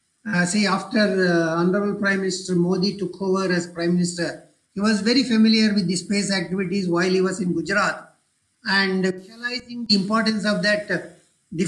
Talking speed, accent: 180 wpm, Indian